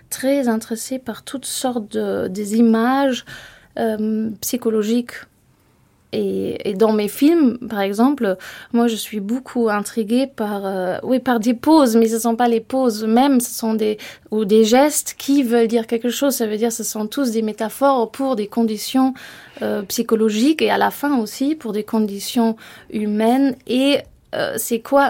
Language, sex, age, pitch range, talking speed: French, female, 20-39, 215-250 Hz, 175 wpm